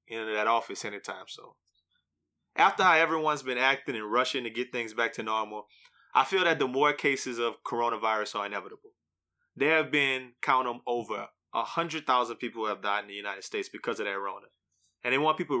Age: 20-39